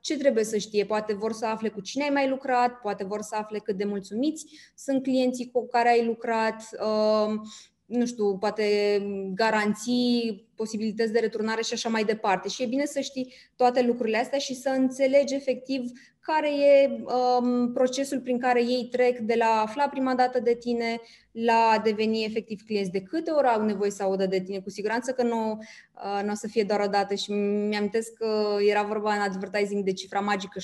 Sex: female